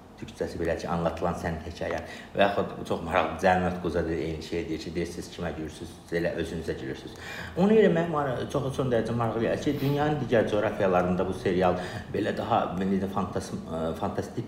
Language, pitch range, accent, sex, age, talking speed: Turkish, 85-120 Hz, native, male, 60-79, 165 wpm